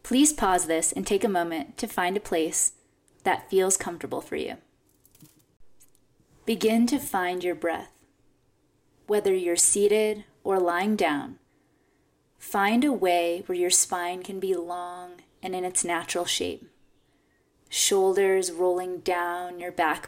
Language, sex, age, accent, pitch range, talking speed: English, female, 20-39, American, 165-200 Hz, 135 wpm